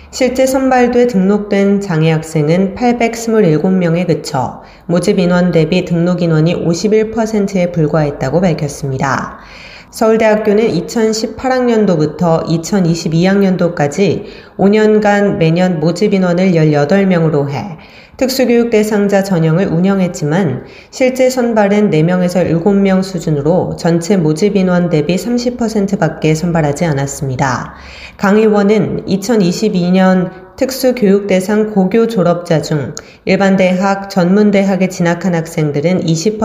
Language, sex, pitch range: Korean, female, 160-210 Hz